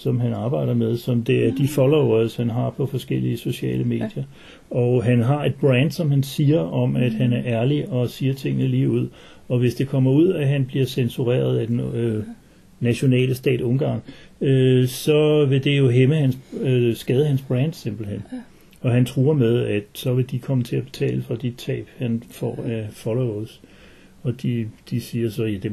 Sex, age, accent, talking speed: male, 60-79, native, 200 wpm